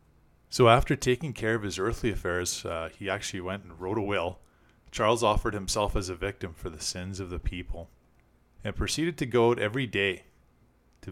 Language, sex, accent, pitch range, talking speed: English, male, American, 95-115 Hz, 195 wpm